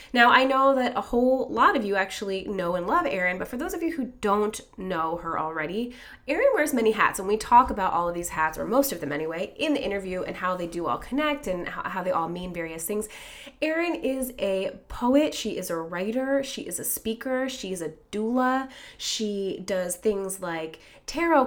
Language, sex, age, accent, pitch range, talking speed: English, female, 20-39, American, 180-245 Hz, 220 wpm